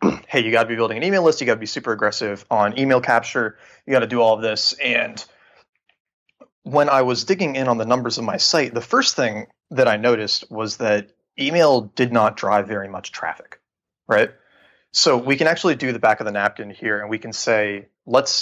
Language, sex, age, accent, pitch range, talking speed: English, male, 30-49, American, 105-130 Hz, 225 wpm